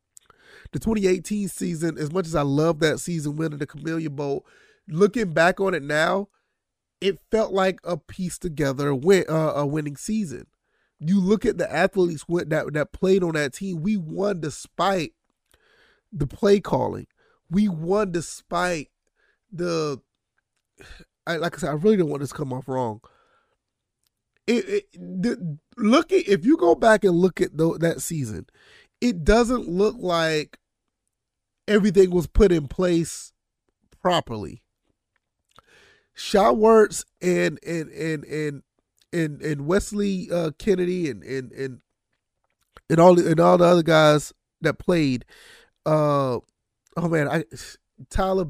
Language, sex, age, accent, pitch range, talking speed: English, male, 30-49, American, 150-195 Hz, 145 wpm